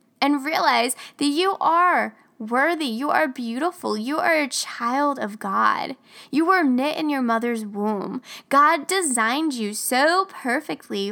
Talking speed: 145 wpm